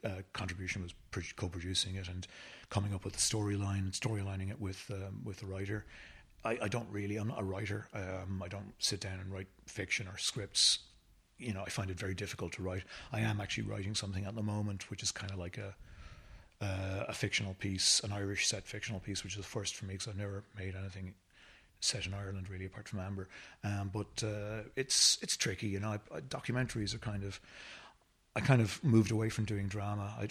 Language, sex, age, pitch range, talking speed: English, male, 30-49, 95-110 Hz, 220 wpm